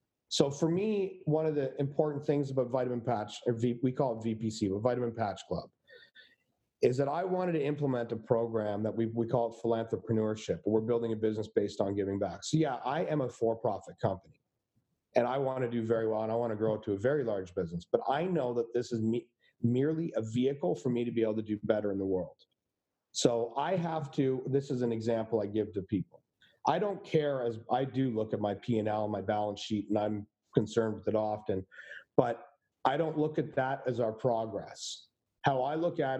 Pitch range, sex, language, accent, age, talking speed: 110-145 Hz, male, English, American, 40-59, 215 wpm